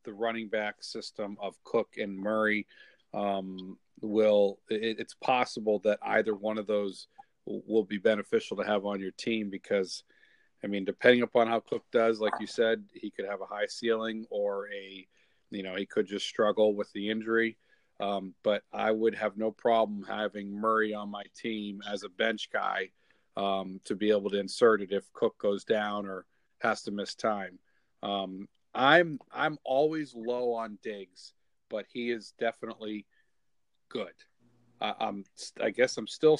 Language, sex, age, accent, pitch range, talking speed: English, male, 40-59, American, 100-115 Hz, 170 wpm